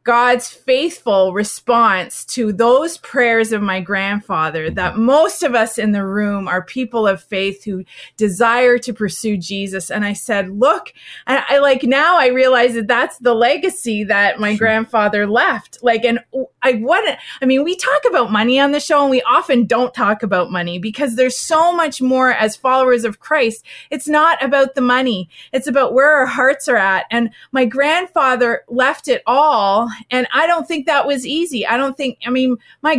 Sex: female